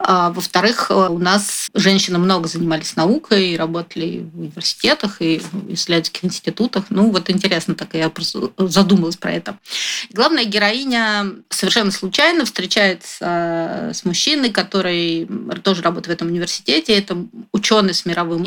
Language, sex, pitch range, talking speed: Russian, female, 180-215 Hz, 125 wpm